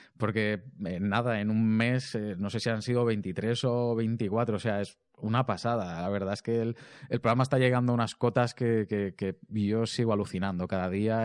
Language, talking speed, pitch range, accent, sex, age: Spanish, 210 wpm, 100-120 Hz, Spanish, male, 20-39